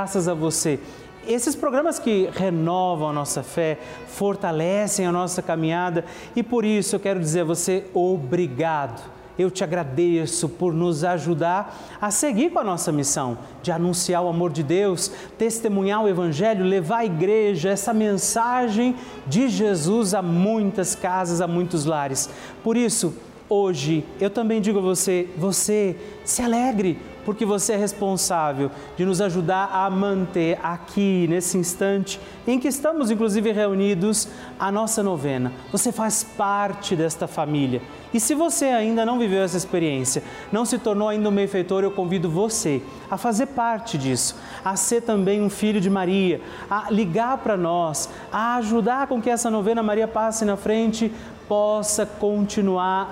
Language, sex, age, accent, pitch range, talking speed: Portuguese, male, 40-59, Brazilian, 175-215 Hz, 155 wpm